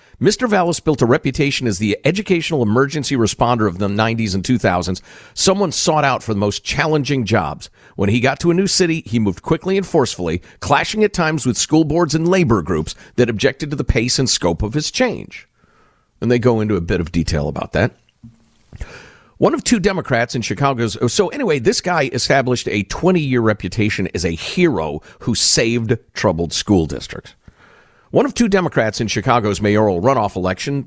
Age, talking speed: 50-69, 185 wpm